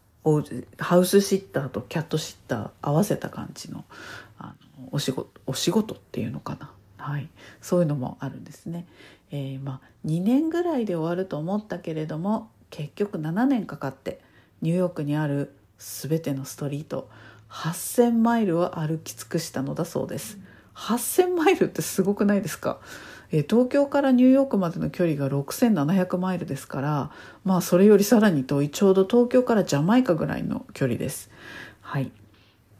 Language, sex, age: Japanese, female, 50-69